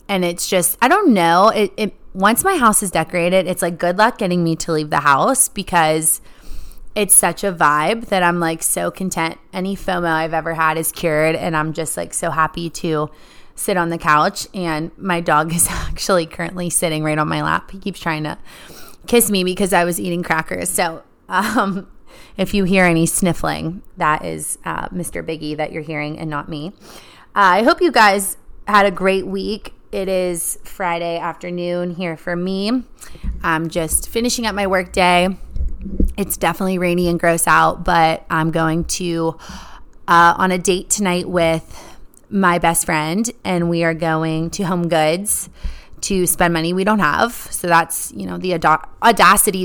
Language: English